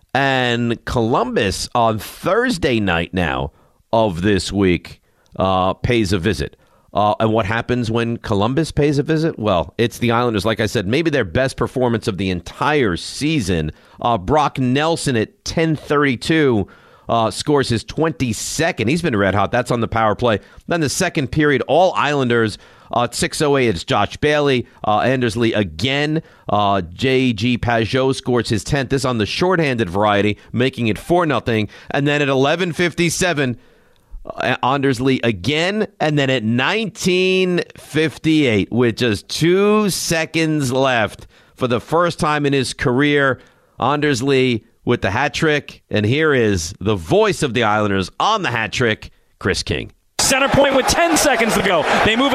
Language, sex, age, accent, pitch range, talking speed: English, male, 40-59, American, 110-160 Hz, 155 wpm